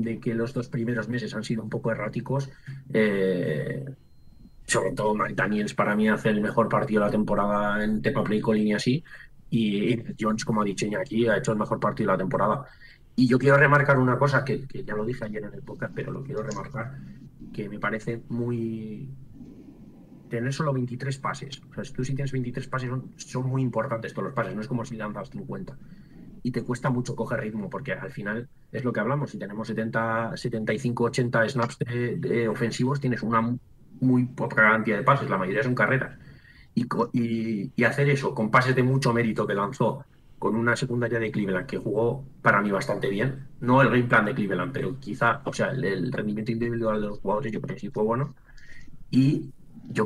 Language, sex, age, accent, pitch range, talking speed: English, male, 30-49, Spanish, 110-130 Hz, 210 wpm